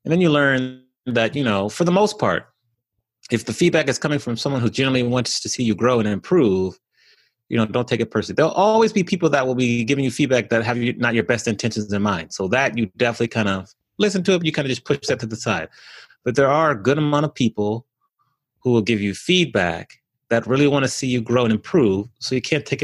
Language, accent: English, American